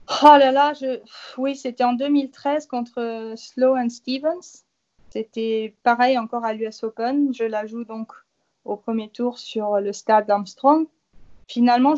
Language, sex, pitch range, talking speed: French, female, 225-275 Hz, 145 wpm